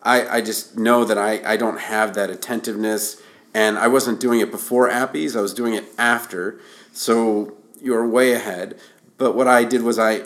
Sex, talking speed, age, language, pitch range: male, 195 wpm, 50-69, English, 105-125 Hz